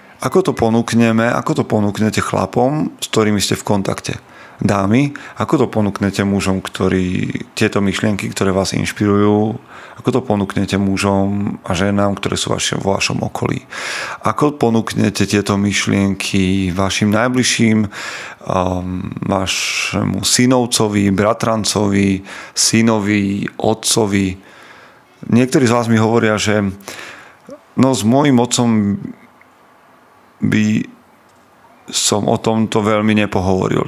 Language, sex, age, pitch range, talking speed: Slovak, male, 40-59, 100-115 Hz, 110 wpm